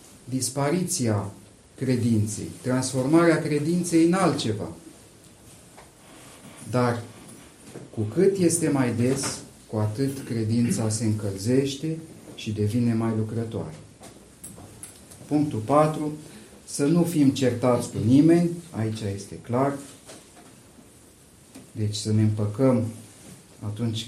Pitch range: 105-140 Hz